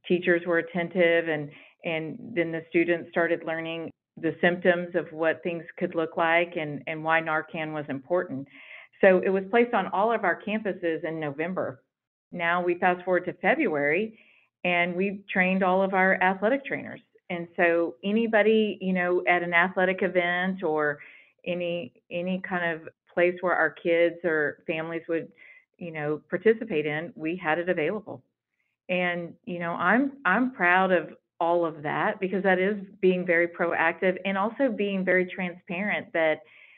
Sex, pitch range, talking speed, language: female, 160-185 Hz, 165 wpm, English